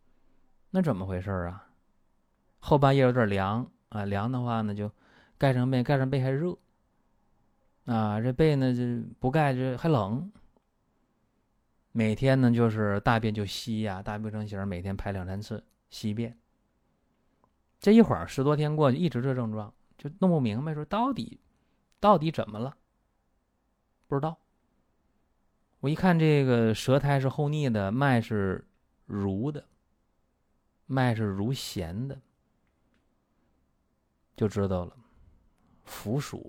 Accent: native